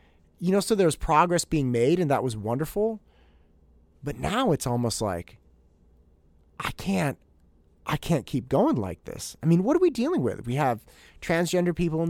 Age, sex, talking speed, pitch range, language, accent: 30-49, male, 180 wpm, 100-145 Hz, English, American